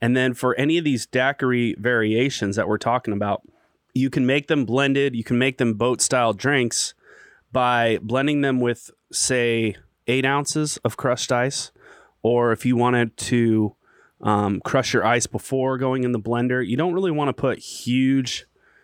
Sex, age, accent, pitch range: male, 30-49, American, 115-140 Hz